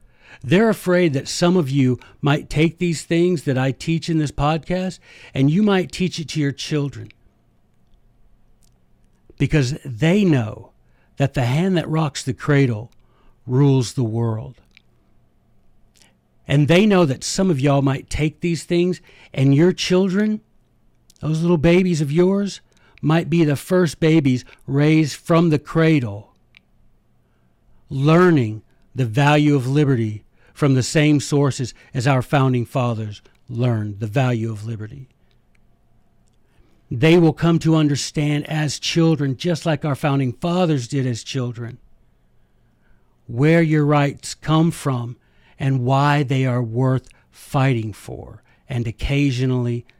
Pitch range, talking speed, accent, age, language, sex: 125-165 Hz, 135 wpm, American, 60-79, English, male